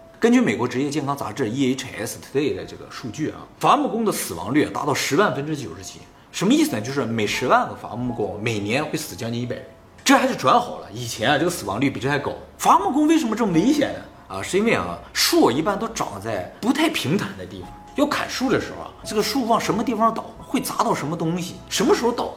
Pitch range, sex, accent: 105-175 Hz, male, native